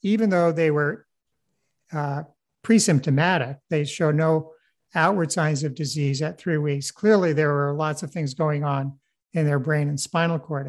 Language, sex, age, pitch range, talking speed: English, male, 50-69, 145-170 Hz, 170 wpm